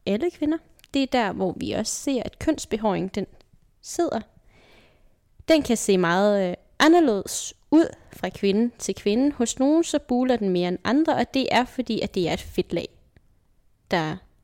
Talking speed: 170 wpm